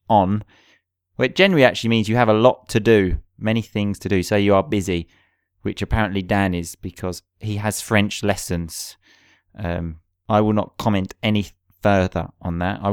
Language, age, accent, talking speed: English, 30-49, British, 175 wpm